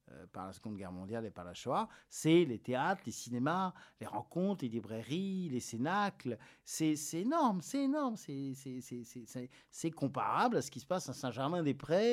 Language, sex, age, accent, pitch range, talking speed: French, male, 50-69, French, 120-165 Hz, 195 wpm